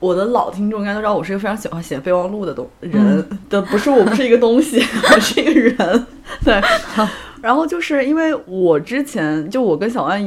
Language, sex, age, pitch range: Chinese, female, 20-39, 175-245 Hz